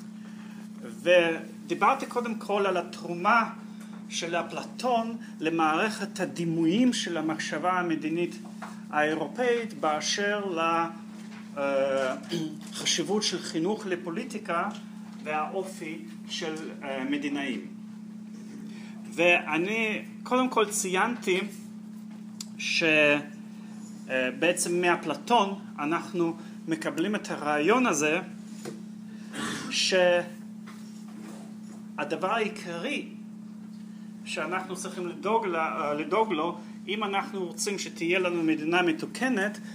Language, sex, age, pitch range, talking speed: Hebrew, male, 40-59, 175-215 Hz, 70 wpm